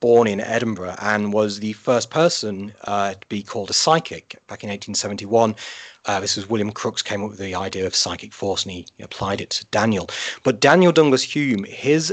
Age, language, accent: 30-49, English, British